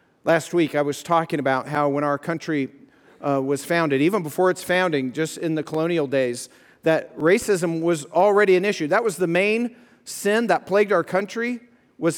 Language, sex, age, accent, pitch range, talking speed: English, male, 40-59, American, 165-210 Hz, 185 wpm